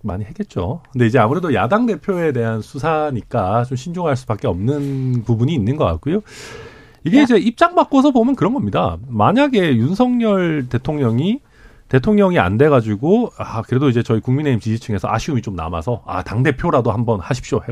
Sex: male